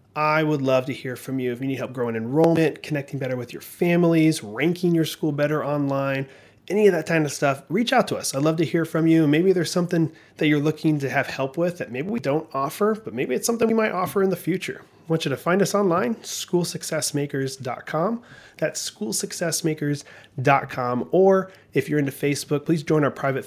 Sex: male